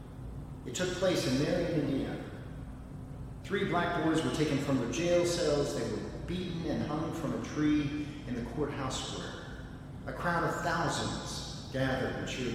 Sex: male